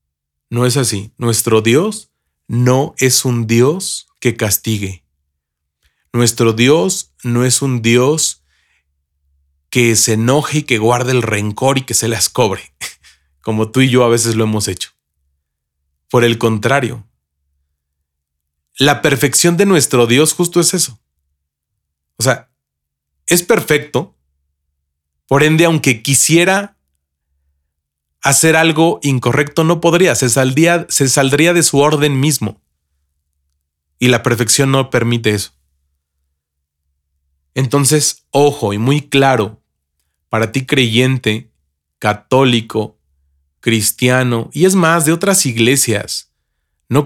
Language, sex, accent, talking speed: Spanish, male, Mexican, 120 wpm